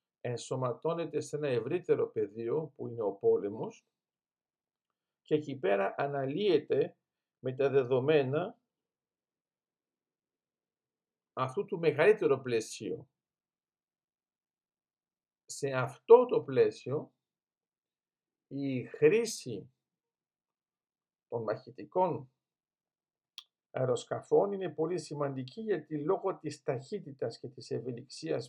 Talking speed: 80 wpm